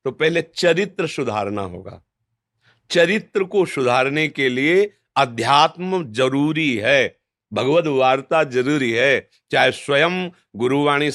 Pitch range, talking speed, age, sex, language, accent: 120-175 Hz, 110 wpm, 50-69, male, Hindi, native